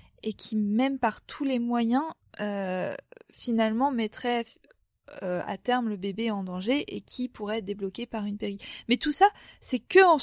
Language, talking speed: French, 180 wpm